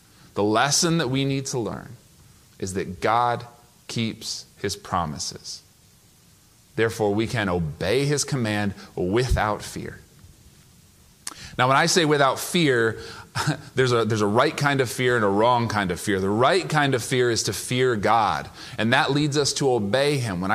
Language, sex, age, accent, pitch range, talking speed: English, male, 30-49, American, 110-140 Hz, 165 wpm